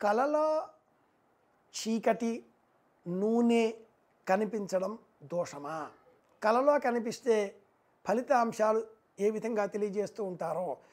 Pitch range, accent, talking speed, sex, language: 175-235 Hz, native, 65 wpm, male, Telugu